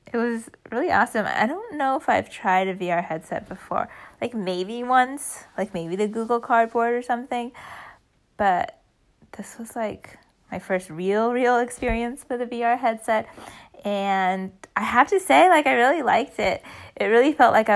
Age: 20-39